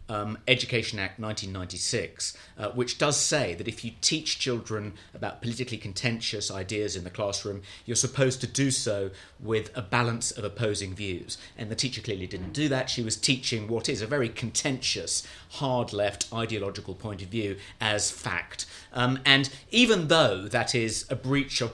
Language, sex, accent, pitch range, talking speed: English, male, British, 105-130 Hz, 175 wpm